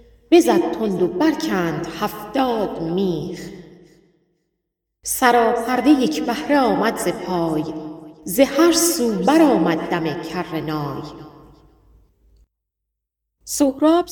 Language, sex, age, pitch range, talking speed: Persian, female, 40-59, 170-255 Hz, 75 wpm